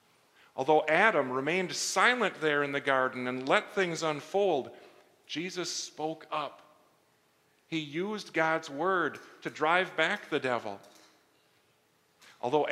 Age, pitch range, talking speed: 40-59, 135-180 Hz, 120 wpm